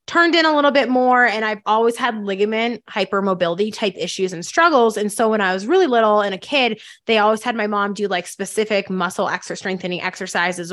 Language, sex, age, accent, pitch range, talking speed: English, female, 20-39, American, 185-230 Hz, 215 wpm